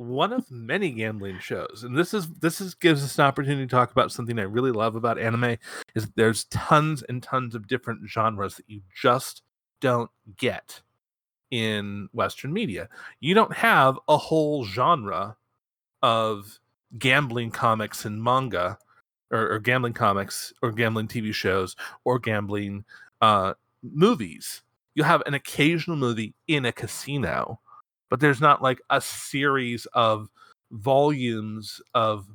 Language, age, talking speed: English, 30-49, 145 wpm